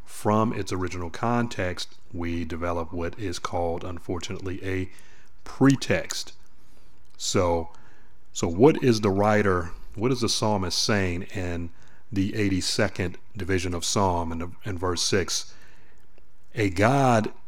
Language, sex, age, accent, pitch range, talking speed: English, male, 30-49, American, 90-105 Hz, 120 wpm